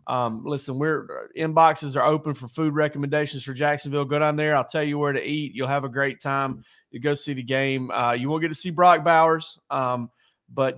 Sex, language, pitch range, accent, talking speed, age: male, English, 125-155 Hz, American, 225 wpm, 30-49